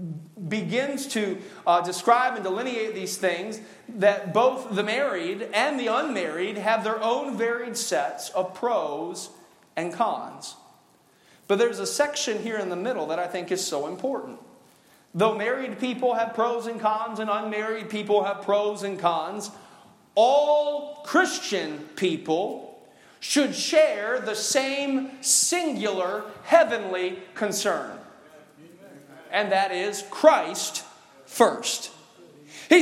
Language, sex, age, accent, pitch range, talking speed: English, male, 40-59, American, 205-280 Hz, 125 wpm